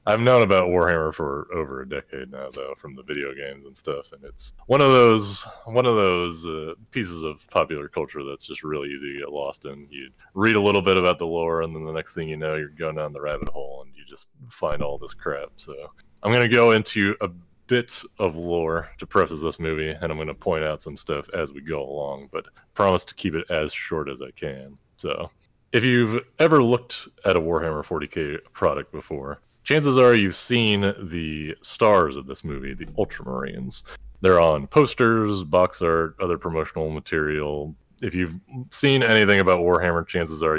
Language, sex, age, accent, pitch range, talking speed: English, male, 30-49, American, 80-105 Hz, 205 wpm